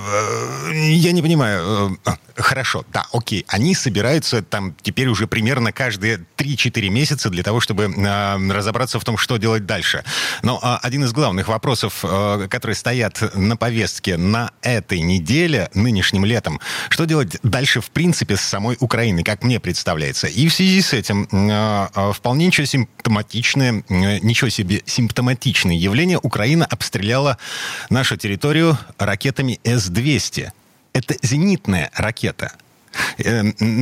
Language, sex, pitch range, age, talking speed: Russian, male, 105-135 Hz, 30-49, 130 wpm